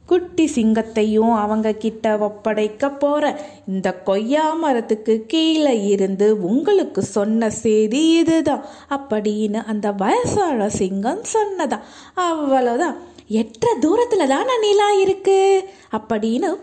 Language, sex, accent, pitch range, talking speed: Tamil, female, native, 235-340 Hz, 90 wpm